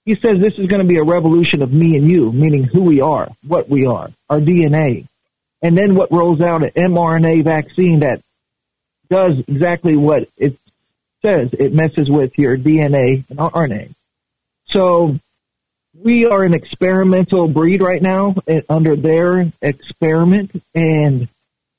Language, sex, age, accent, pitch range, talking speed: English, male, 50-69, American, 145-180 Hz, 150 wpm